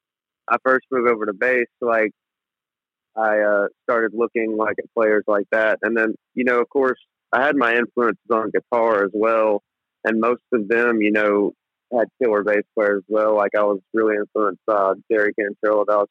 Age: 40-59